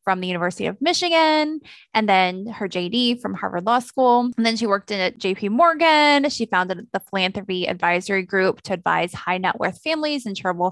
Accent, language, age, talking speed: American, English, 20-39, 190 wpm